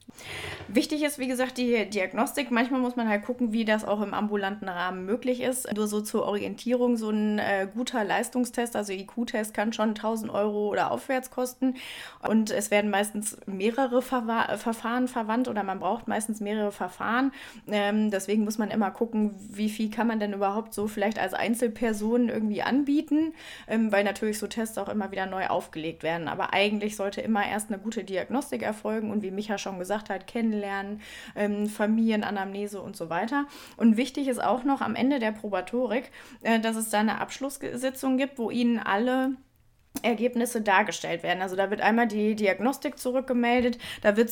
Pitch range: 210-250 Hz